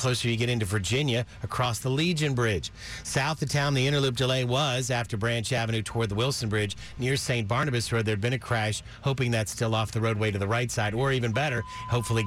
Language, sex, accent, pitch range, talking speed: English, male, American, 115-135 Hz, 220 wpm